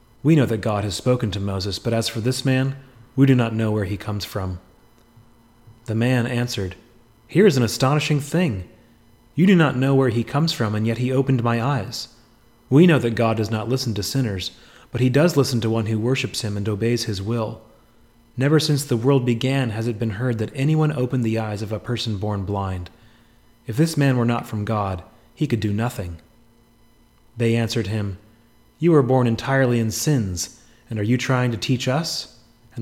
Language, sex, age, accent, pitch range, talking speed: English, male, 30-49, American, 110-130 Hz, 205 wpm